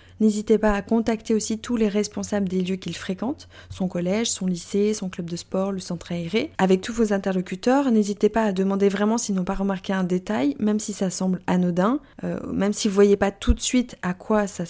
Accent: French